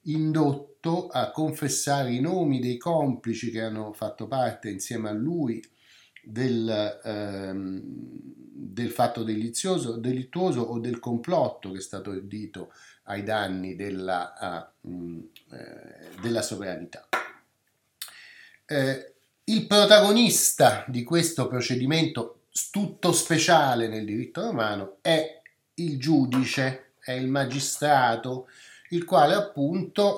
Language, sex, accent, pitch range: Italian, male, native, 110-165 Hz